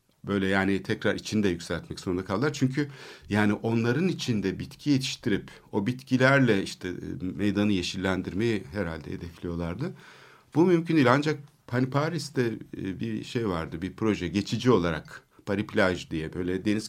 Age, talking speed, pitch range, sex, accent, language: 60-79, 135 wpm, 95-125 Hz, male, native, Turkish